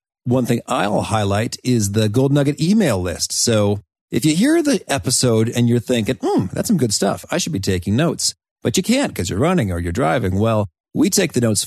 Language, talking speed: English, 220 wpm